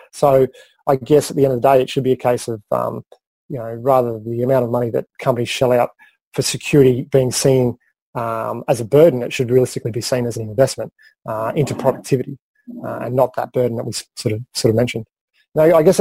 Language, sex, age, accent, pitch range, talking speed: English, male, 30-49, Australian, 120-140 Hz, 230 wpm